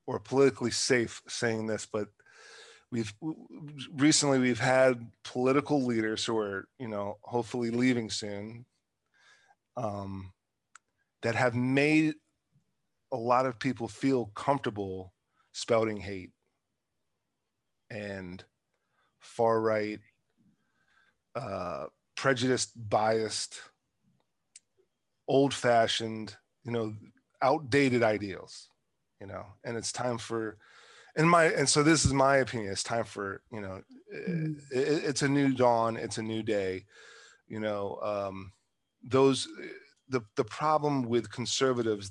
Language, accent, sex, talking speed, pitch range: English, American, male, 115 wpm, 105-130 Hz